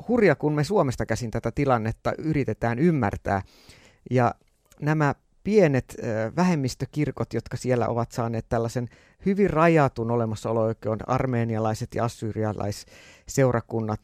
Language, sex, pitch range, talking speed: Finnish, male, 110-155 Hz, 105 wpm